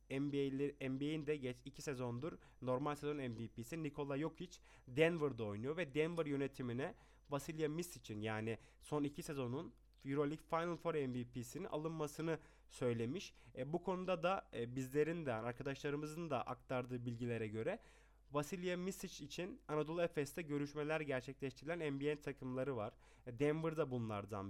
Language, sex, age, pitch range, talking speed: Turkish, male, 30-49, 125-155 Hz, 125 wpm